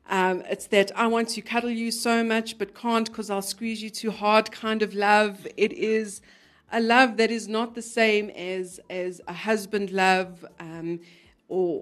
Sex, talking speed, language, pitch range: female, 190 wpm, English, 180-225 Hz